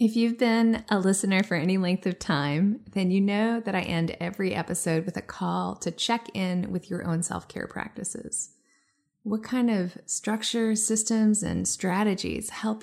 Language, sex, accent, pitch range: English, female, American, 180-220 Hz